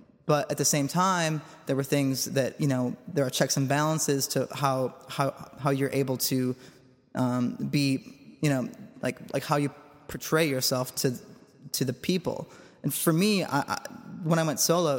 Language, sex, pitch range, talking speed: English, male, 130-150 Hz, 185 wpm